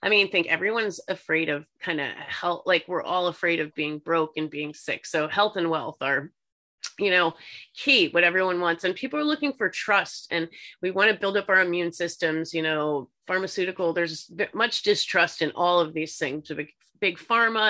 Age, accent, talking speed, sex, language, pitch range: 30-49, American, 195 wpm, female, English, 155-185 Hz